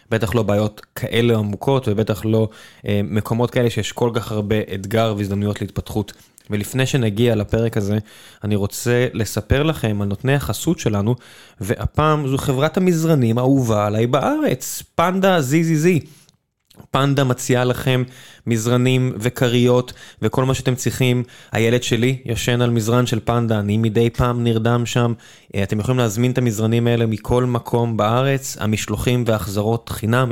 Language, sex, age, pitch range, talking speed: Hebrew, male, 20-39, 110-135 Hz, 140 wpm